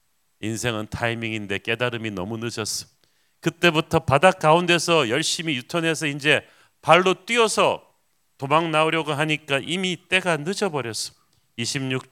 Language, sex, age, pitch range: Korean, male, 40-59, 125-160 Hz